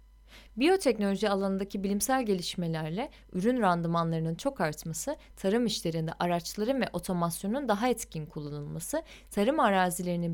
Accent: native